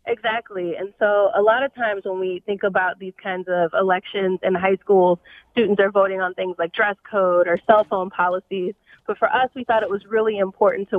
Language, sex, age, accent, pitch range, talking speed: English, female, 20-39, American, 190-230 Hz, 220 wpm